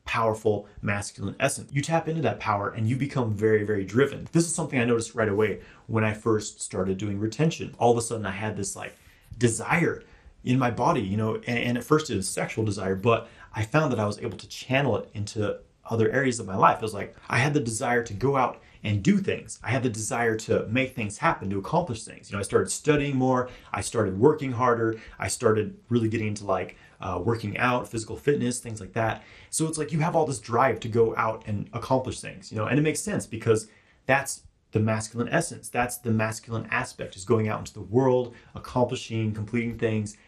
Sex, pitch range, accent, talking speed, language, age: male, 105-125 Hz, American, 225 wpm, English, 30-49